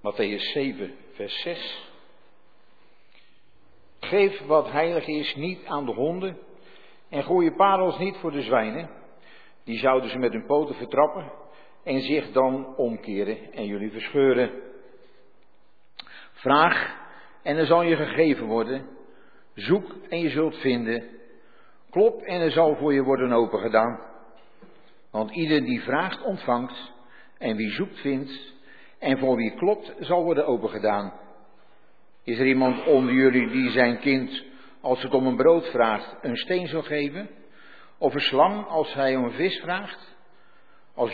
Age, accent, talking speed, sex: 60-79, Dutch, 145 wpm, male